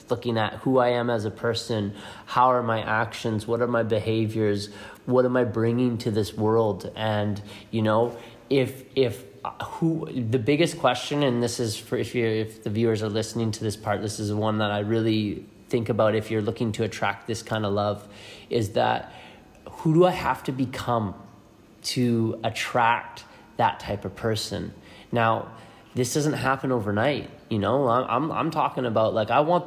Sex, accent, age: male, American, 30-49